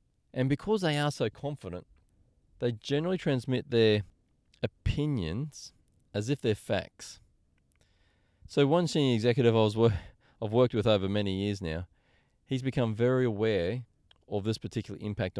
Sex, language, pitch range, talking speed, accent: male, English, 95-120 Hz, 145 wpm, Australian